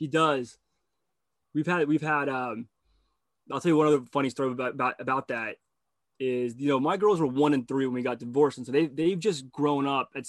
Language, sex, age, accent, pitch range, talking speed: English, male, 20-39, American, 130-160 Hz, 225 wpm